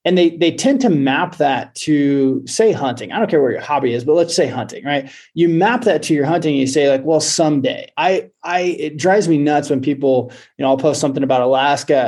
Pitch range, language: 135-165 Hz, English